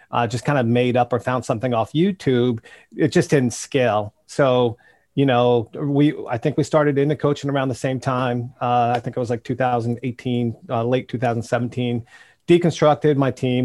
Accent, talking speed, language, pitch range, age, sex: American, 185 wpm, English, 120-145 Hz, 40-59, male